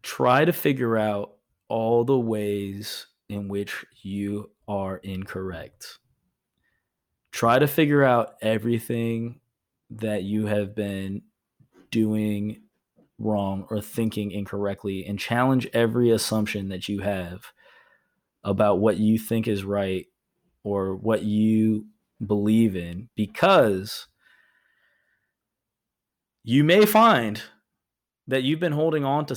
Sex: male